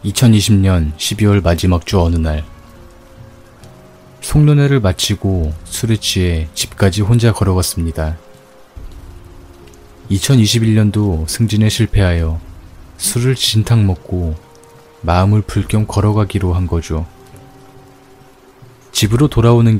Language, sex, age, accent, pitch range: Korean, male, 20-39, native, 85-110 Hz